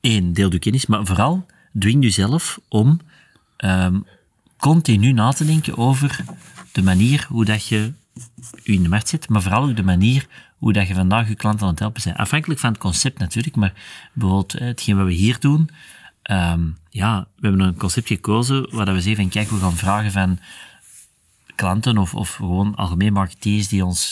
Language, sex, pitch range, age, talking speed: Dutch, male, 95-125 Hz, 40-59, 185 wpm